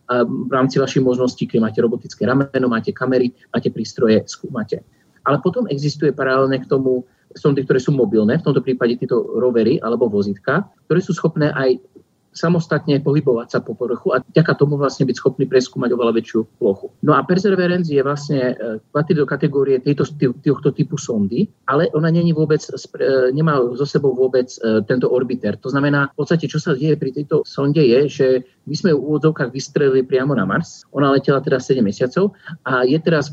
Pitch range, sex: 125-150 Hz, male